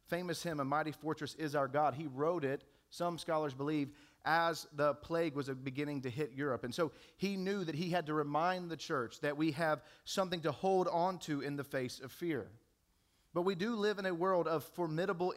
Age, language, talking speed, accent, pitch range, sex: 40-59, English, 215 wpm, American, 135-175 Hz, male